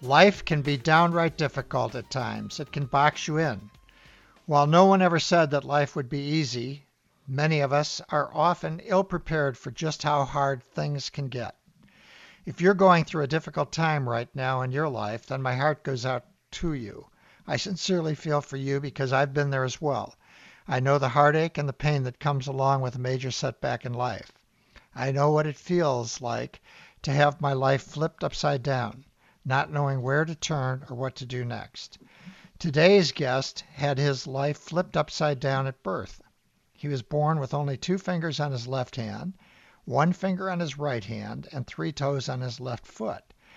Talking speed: 190 wpm